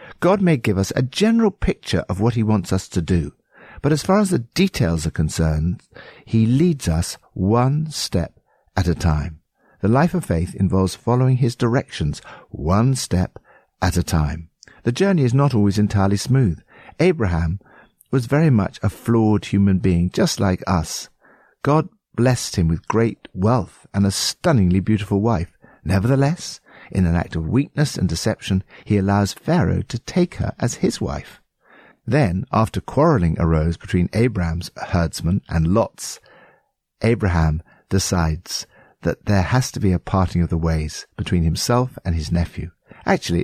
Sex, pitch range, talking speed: male, 85-120 Hz, 160 wpm